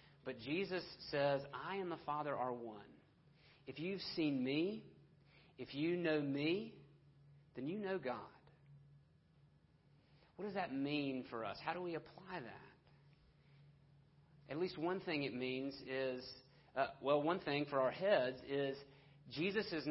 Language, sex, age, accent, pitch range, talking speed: English, male, 40-59, American, 140-155 Hz, 150 wpm